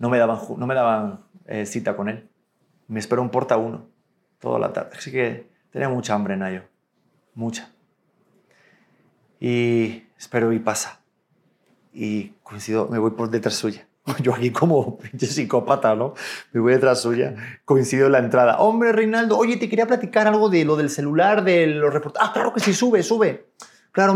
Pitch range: 120-170 Hz